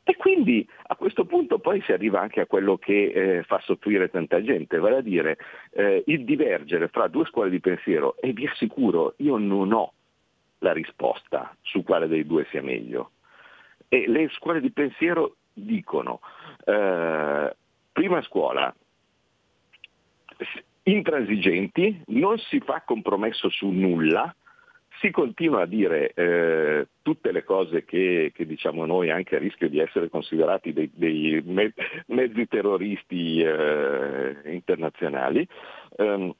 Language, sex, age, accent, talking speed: Italian, male, 50-69, native, 130 wpm